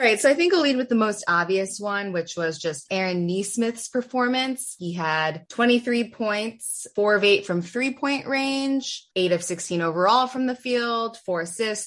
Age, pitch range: 20-39, 170-235 Hz